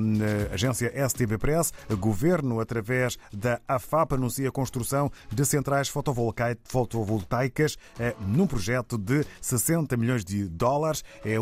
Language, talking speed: Portuguese, 110 wpm